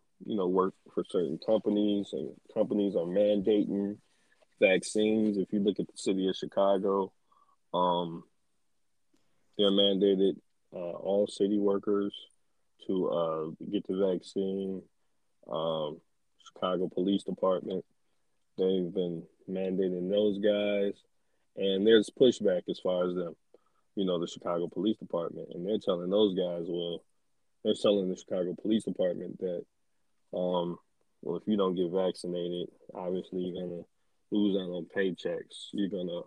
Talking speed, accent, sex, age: 135 wpm, American, male, 20-39